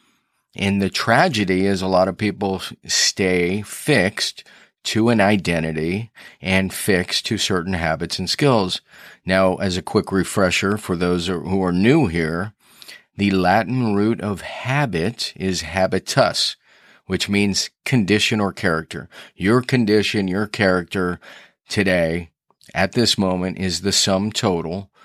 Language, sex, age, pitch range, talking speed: English, male, 40-59, 90-110 Hz, 130 wpm